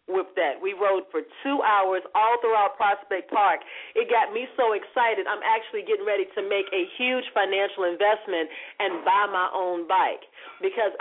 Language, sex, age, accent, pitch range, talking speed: English, female, 40-59, American, 190-290 Hz, 175 wpm